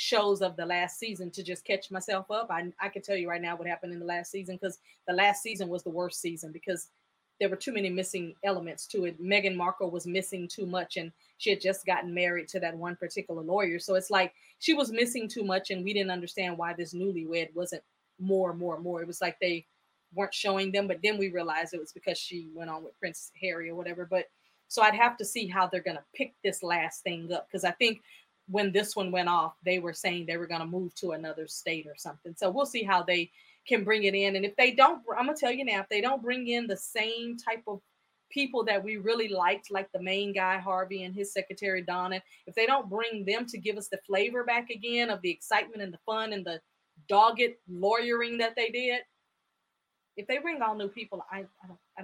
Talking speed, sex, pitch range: 240 wpm, female, 175-210 Hz